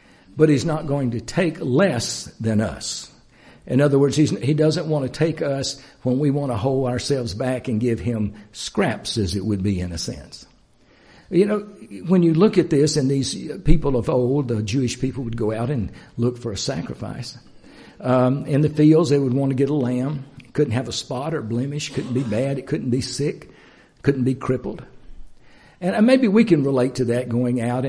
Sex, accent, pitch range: male, American, 115-145 Hz